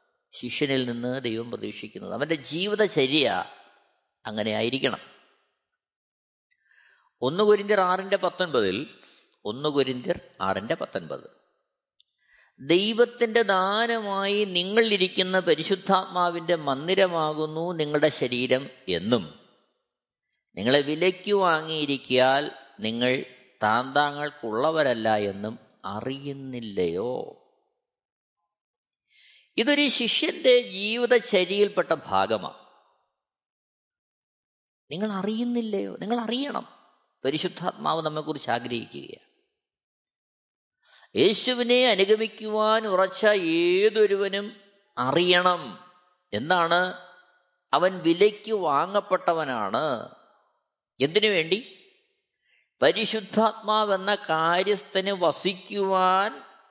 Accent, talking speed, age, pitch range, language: native, 55 wpm, 20-39, 150-215 Hz, Malayalam